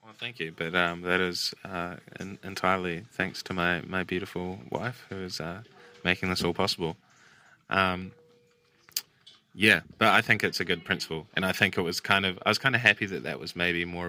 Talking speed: 205 wpm